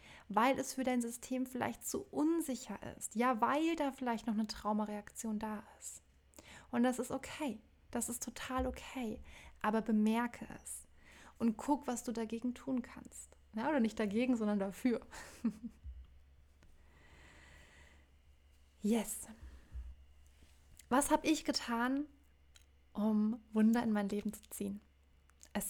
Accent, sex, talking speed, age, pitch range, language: German, female, 130 wpm, 20-39, 190-240 Hz, German